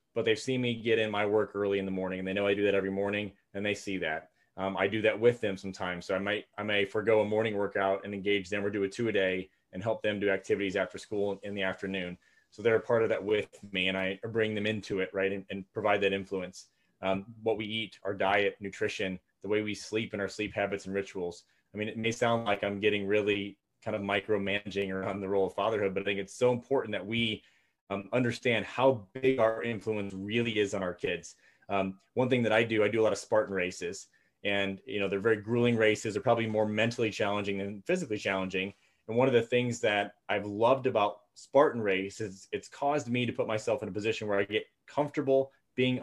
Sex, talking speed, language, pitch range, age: male, 240 wpm, English, 100-115 Hz, 30-49